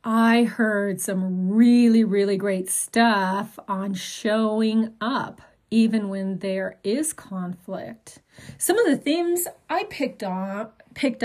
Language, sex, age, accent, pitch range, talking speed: English, female, 40-59, American, 195-255 Hz, 110 wpm